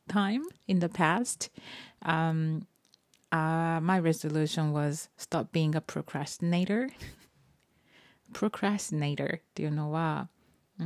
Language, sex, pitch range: Japanese, female, 160-210 Hz